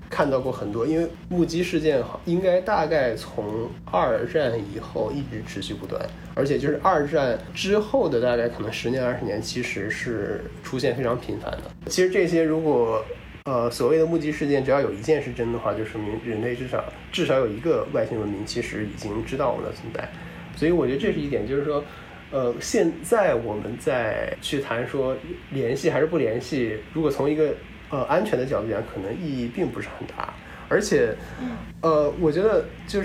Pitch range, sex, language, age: 115-155 Hz, male, Chinese, 20-39